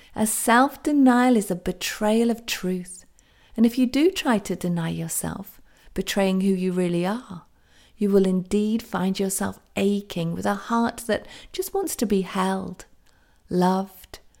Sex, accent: female, British